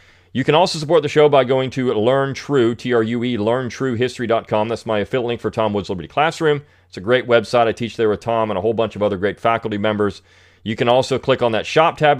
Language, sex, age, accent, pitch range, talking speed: English, male, 40-59, American, 105-125 Hz, 235 wpm